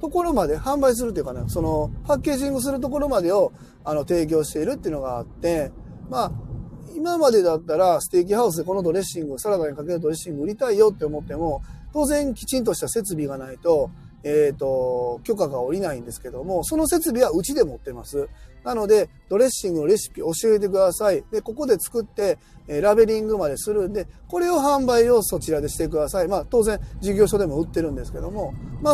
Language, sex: Japanese, male